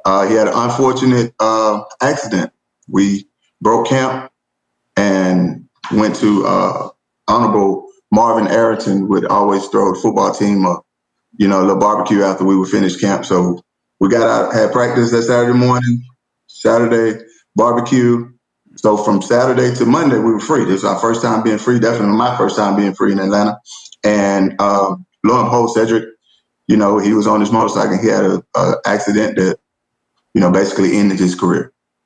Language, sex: English, male